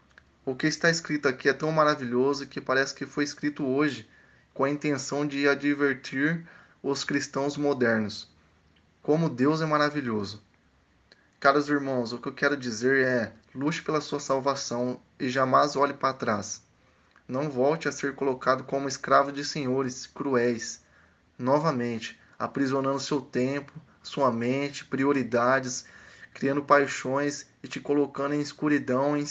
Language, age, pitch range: Portuguese, 20-39, 125-145 Hz